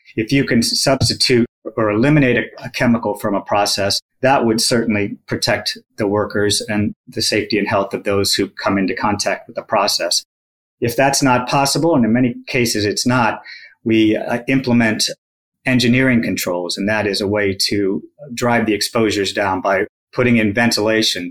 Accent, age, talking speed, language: American, 40-59, 165 wpm, English